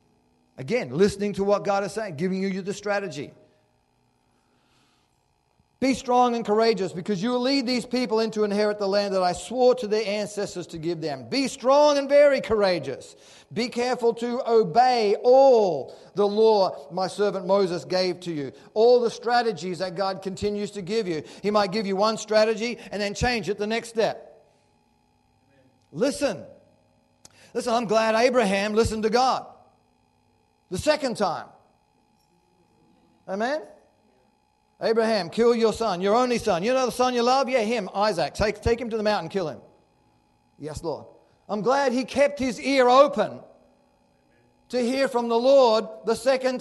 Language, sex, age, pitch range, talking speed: English, male, 40-59, 180-240 Hz, 160 wpm